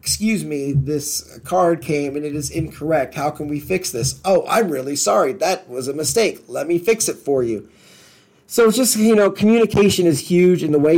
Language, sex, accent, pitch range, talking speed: English, male, American, 135-170 Hz, 215 wpm